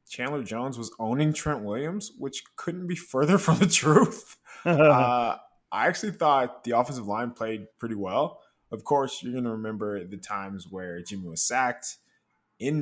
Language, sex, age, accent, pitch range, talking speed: English, male, 20-39, American, 105-150 Hz, 170 wpm